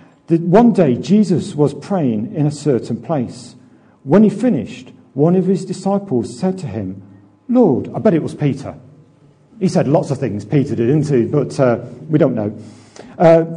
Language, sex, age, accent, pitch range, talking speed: English, male, 50-69, British, 135-205 Hz, 175 wpm